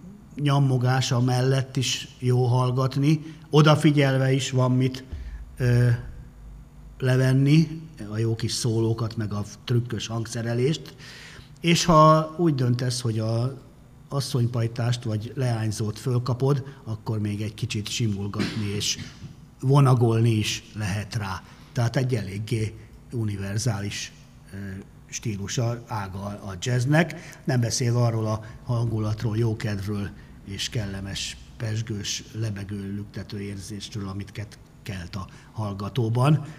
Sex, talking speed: male, 105 wpm